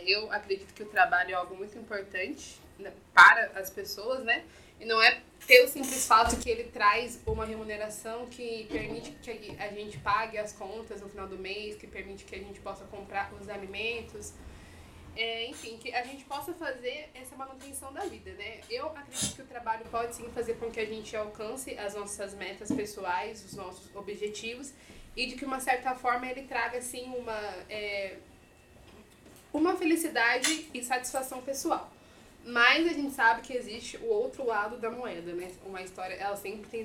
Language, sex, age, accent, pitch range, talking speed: Portuguese, female, 20-39, Brazilian, 205-255 Hz, 180 wpm